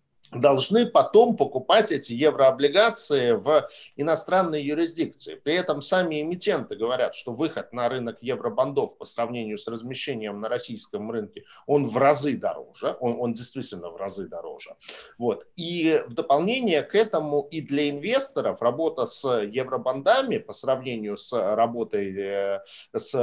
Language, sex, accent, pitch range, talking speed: Russian, male, native, 115-155 Hz, 130 wpm